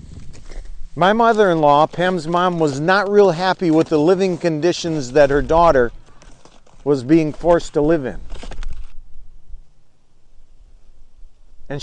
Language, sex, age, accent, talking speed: English, male, 50-69, American, 110 wpm